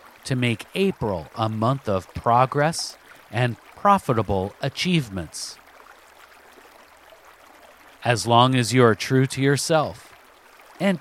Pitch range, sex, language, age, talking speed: 110-160 Hz, male, English, 50-69, 105 wpm